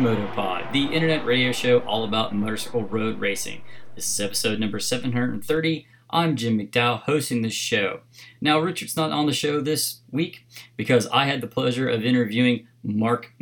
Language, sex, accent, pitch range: English, male, American, 120-140 Hz